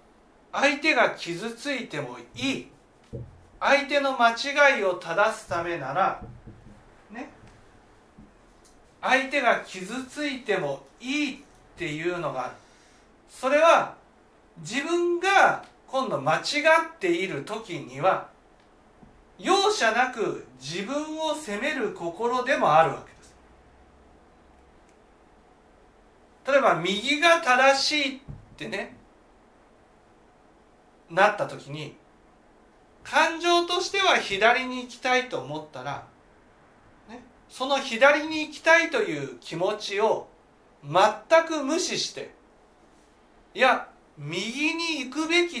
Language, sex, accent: Japanese, male, native